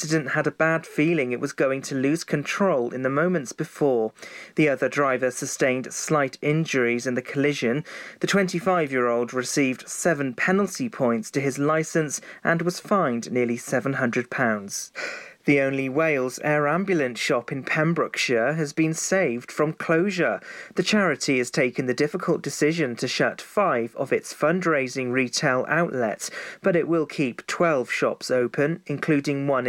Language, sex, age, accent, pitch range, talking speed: English, male, 40-59, British, 130-160 Hz, 155 wpm